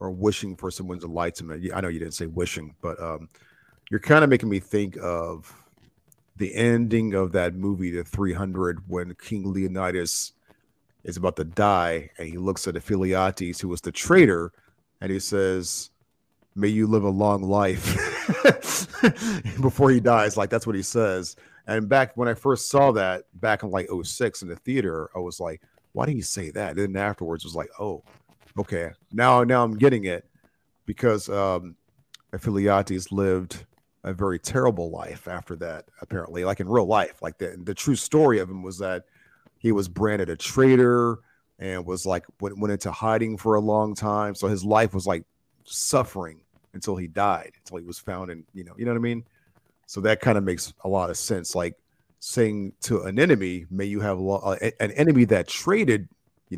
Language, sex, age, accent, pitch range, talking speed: English, male, 40-59, American, 90-110 Hz, 195 wpm